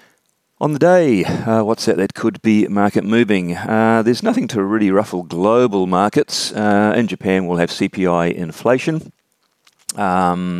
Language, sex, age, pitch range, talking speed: English, male, 40-59, 80-110 Hz, 155 wpm